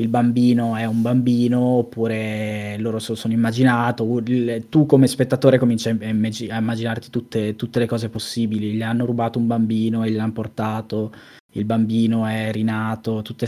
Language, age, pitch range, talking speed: Italian, 20-39, 115-125 Hz, 155 wpm